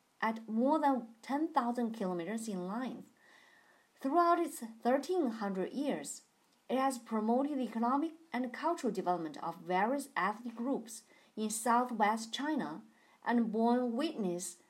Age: 40-59